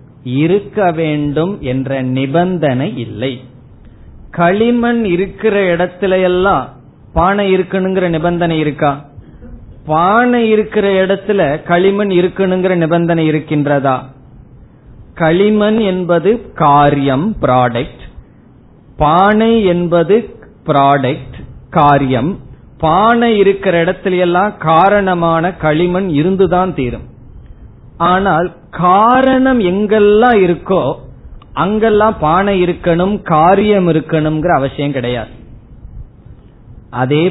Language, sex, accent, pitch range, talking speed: Tamil, male, native, 135-195 Hz, 75 wpm